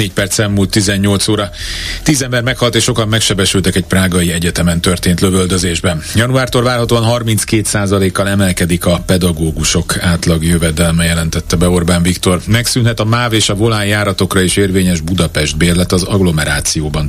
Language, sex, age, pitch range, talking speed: Hungarian, male, 40-59, 85-105 Hz, 145 wpm